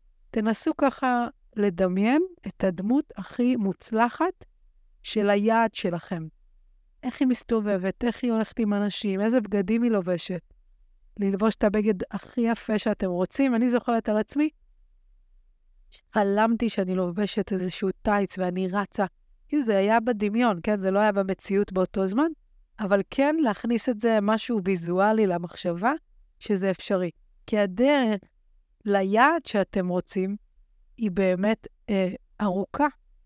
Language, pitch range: Hebrew, 195-245 Hz